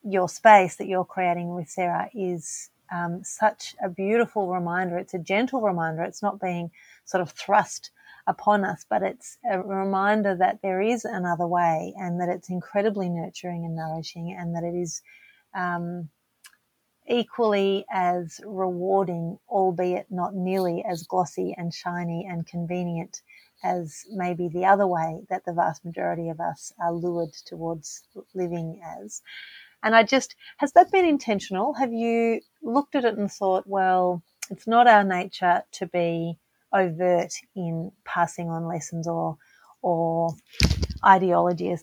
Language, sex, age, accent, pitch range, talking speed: English, female, 30-49, Australian, 170-200 Hz, 150 wpm